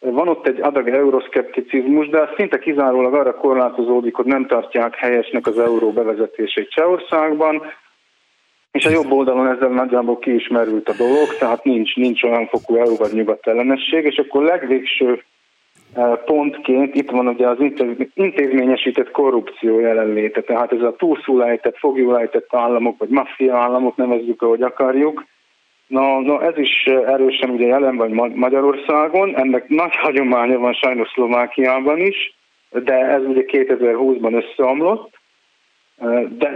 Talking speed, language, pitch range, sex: 130 wpm, Hungarian, 120-140 Hz, male